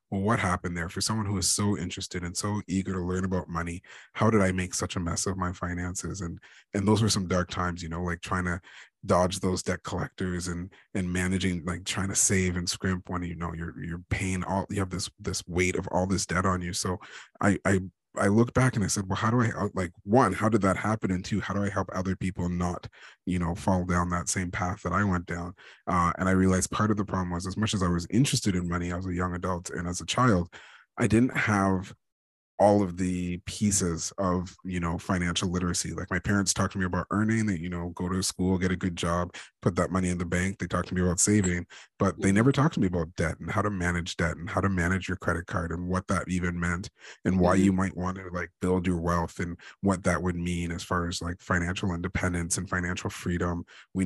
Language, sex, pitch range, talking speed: English, male, 90-100 Hz, 250 wpm